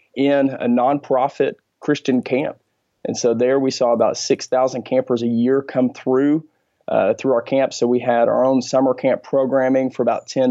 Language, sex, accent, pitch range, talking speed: English, male, American, 125-135 Hz, 190 wpm